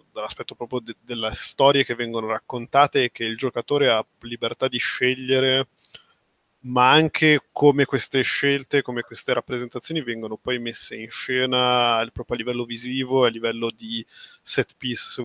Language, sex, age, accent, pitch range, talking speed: Italian, male, 20-39, native, 115-130 Hz, 155 wpm